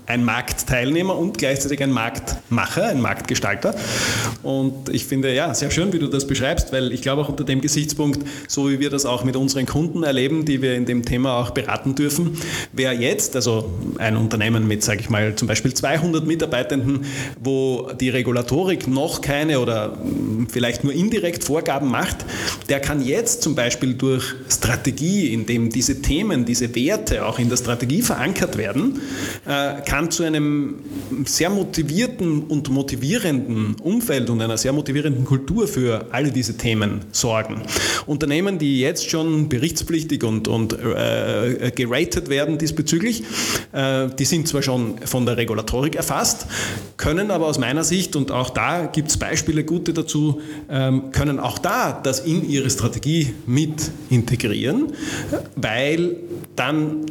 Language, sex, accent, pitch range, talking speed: German, male, Austrian, 125-155 Hz, 155 wpm